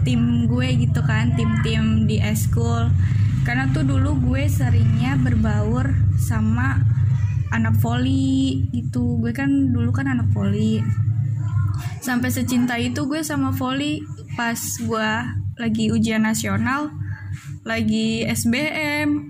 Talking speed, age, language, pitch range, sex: 110 wpm, 10-29, Indonesian, 110-140 Hz, female